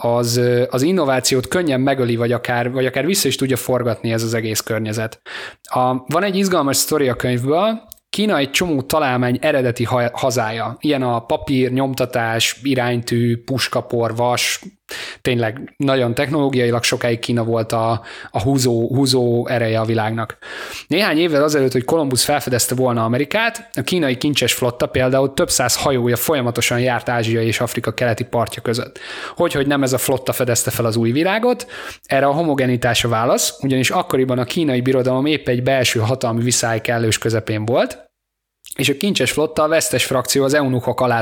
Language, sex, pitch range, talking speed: Hungarian, male, 120-140 Hz, 160 wpm